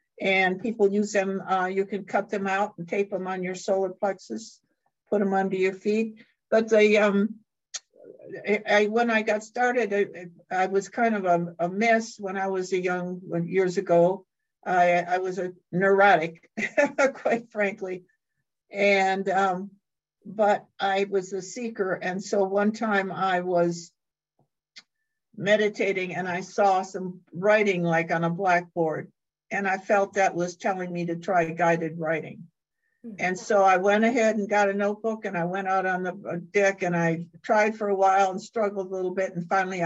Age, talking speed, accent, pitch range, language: 60-79, 170 wpm, American, 175-205 Hz, English